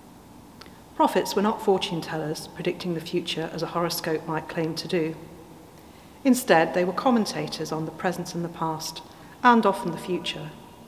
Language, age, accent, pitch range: English, 40-59, British, 160-190 Hz